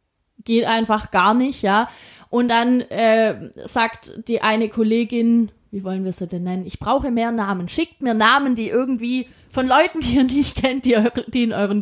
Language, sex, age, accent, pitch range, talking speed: German, female, 30-49, German, 195-260 Hz, 185 wpm